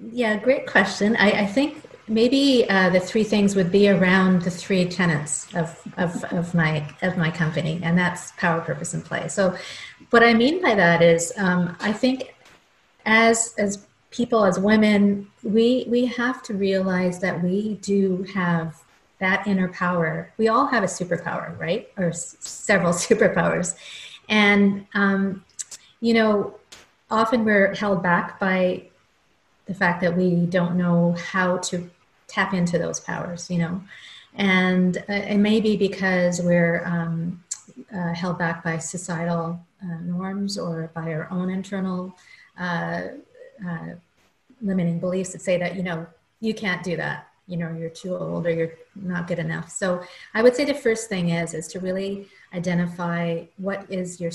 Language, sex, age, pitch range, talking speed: English, female, 40-59, 170-205 Hz, 165 wpm